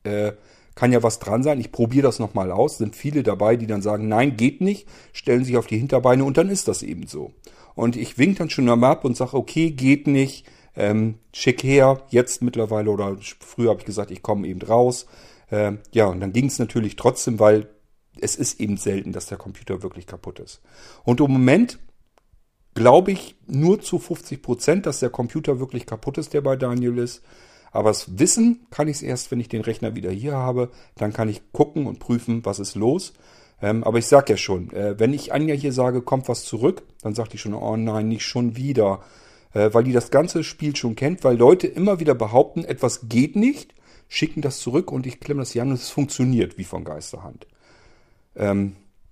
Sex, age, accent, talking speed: male, 50-69, German, 210 wpm